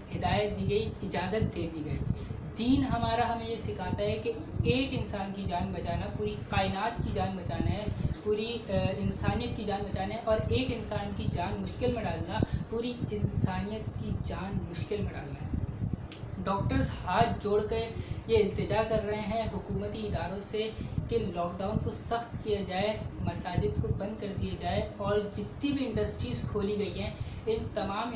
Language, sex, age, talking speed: Urdu, female, 20-39, 175 wpm